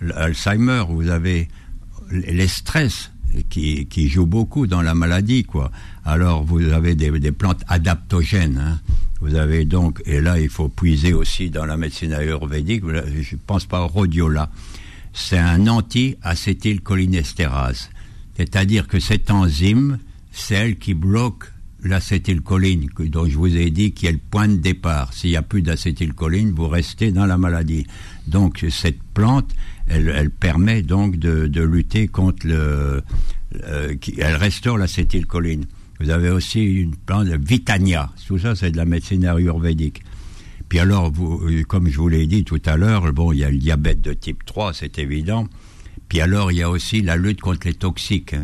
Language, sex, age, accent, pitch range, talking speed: French, male, 60-79, French, 80-95 Hz, 170 wpm